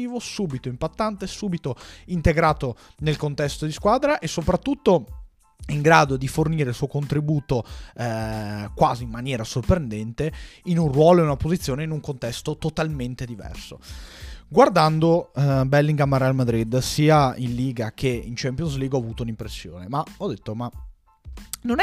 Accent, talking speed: native, 150 wpm